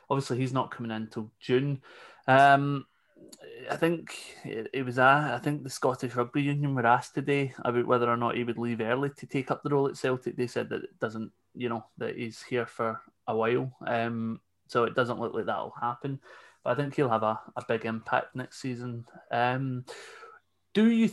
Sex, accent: male, British